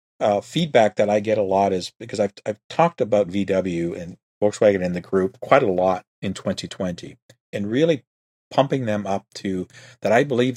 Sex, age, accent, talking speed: male, 40-59, American, 185 wpm